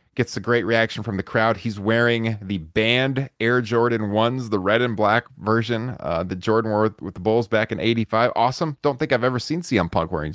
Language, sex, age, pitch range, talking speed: English, male, 30-49, 105-140 Hz, 225 wpm